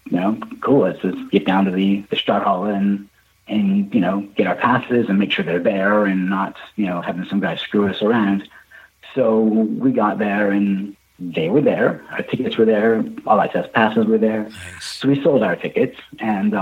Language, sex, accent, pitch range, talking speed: English, male, American, 95-110 Hz, 210 wpm